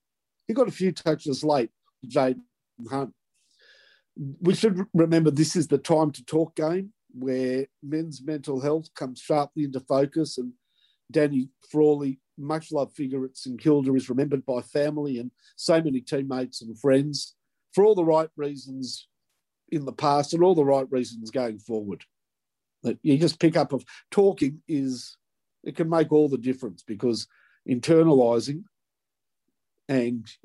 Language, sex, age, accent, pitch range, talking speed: English, male, 50-69, Australian, 130-165 Hz, 150 wpm